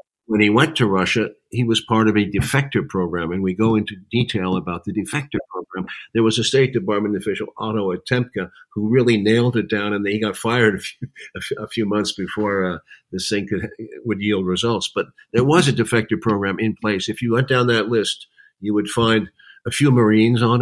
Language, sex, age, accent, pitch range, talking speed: English, male, 50-69, American, 100-115 Hz, 205 wpm